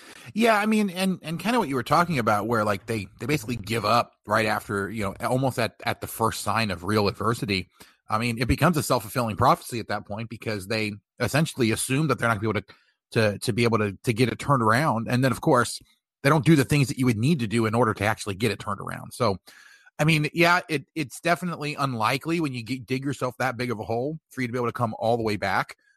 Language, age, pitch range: English, 30-49, 110-150 Hz